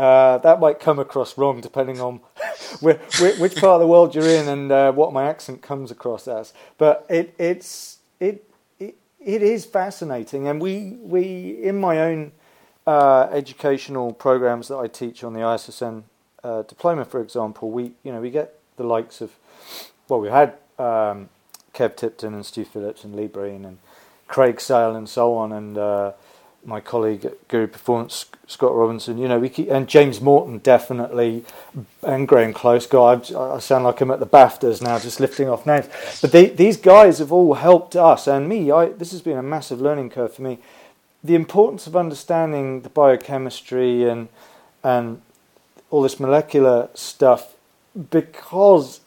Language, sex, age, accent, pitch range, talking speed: English, male, 30-49, British, 120-160 Hz, 175 wpm